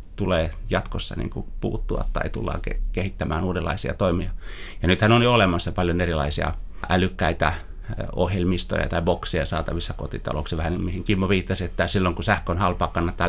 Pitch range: 85-100 Hz